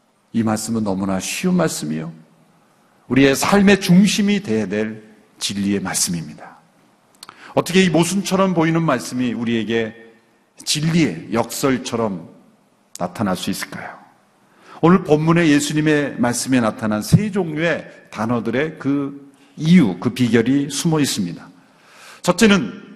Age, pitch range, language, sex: 50-69, 115-165 Hz, Korean, male